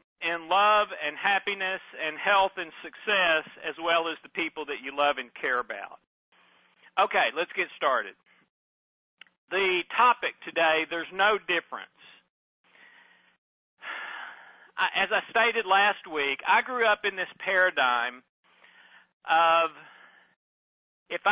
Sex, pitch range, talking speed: male, 160-195 Hz, 120 wpm